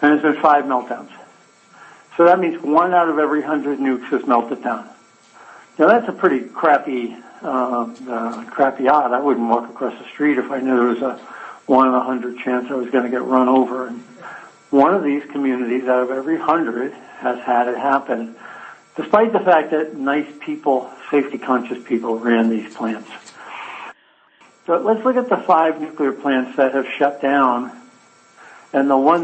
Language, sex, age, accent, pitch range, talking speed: English, male, 60-79, American, 125-150 Hz, 185 wpm